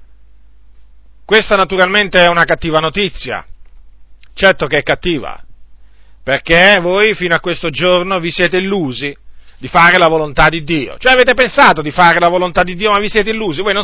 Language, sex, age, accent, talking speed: Italian, male, 40-59, native, 175 wpm